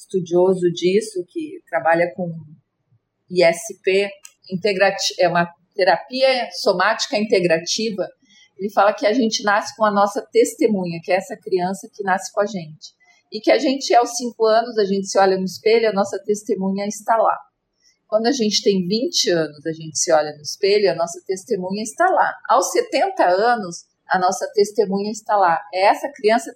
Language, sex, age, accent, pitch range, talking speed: Portuguese, female, 40-59, Brazilian, 180-215 Hz, 175 wpm